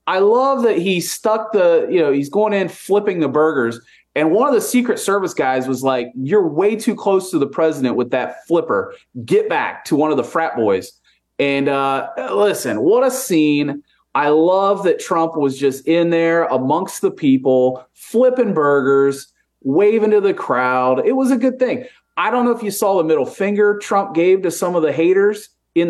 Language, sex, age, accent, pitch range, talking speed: English, male, 30-49, American, 150-245 Hz, 200 wpm